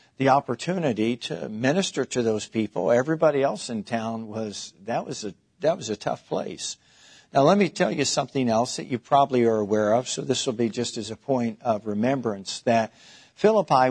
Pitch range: 115-140 Hz